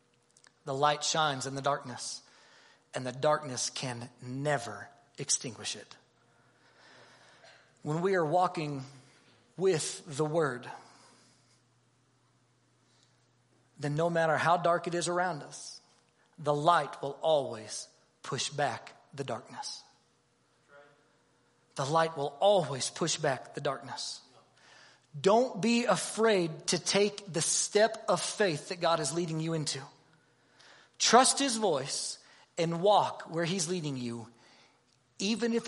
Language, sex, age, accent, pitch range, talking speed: English, male, 40-59, American, 140-220 Hz, 120 wpm